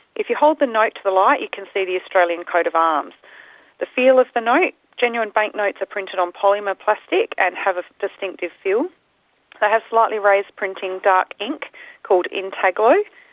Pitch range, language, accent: 185-270 Hz, English, Australian